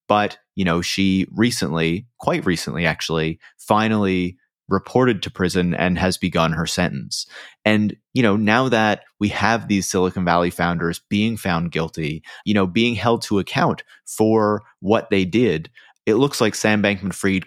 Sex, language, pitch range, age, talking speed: male, English, 90-105 Hz, 30-49, 160 wpm